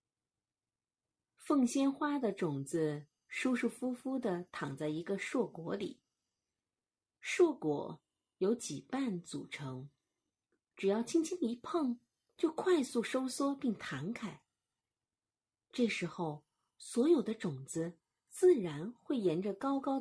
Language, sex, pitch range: Chinese, female, 165-270 Hz